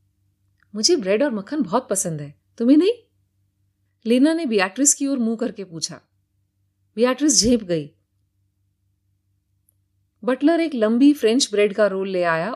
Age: 30-49